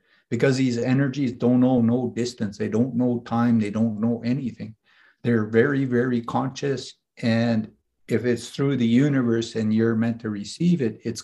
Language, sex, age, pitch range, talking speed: English, male, 50-69, 115-140 Hz, 170 wpm